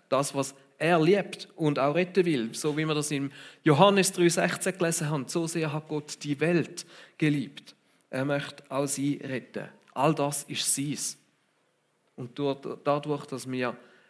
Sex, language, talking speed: male, German, 160 wpm